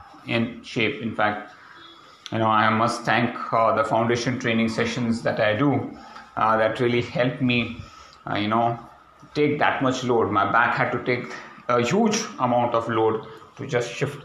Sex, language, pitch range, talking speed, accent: male, English, 110-130 Hz, 175 wpm, Indian